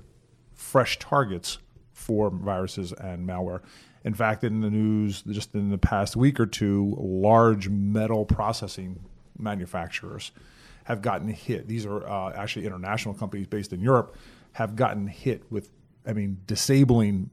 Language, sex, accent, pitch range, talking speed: English, male, American, 100-120 Hz, 140 wpm